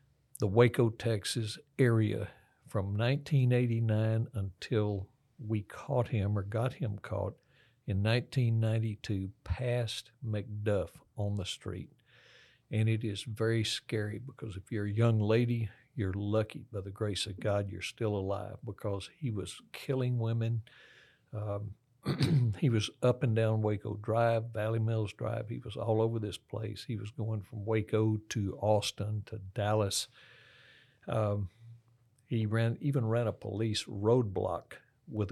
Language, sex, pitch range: English, male, 105-115 Hz